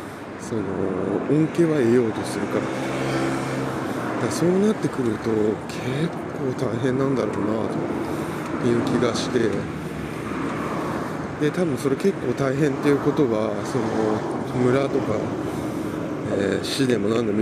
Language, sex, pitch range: Japanese, male, 105-145 Hz